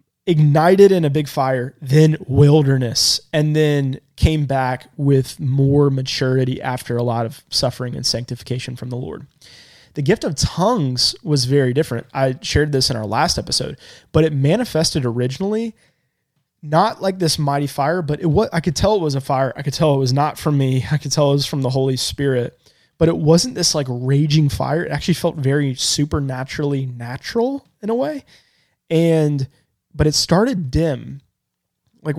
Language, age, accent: English, 20-39, American